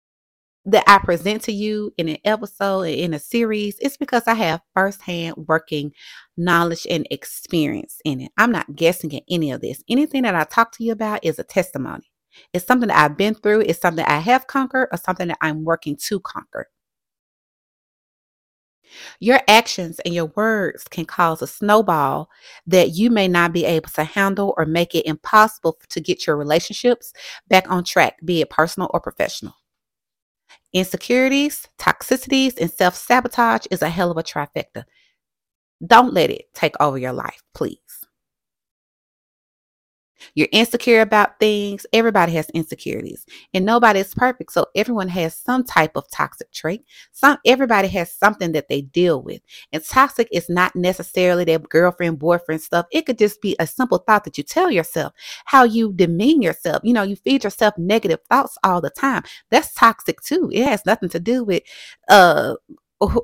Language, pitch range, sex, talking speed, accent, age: English, 170-235 Hz, female, 170 wpm, American, 30-49